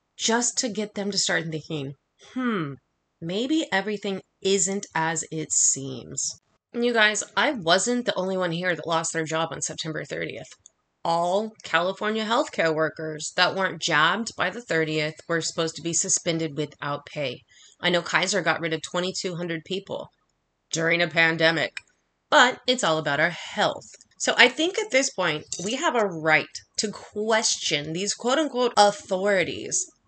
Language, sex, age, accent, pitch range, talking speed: English, female, 30-49, American, 165-230 Hz, 160 wpm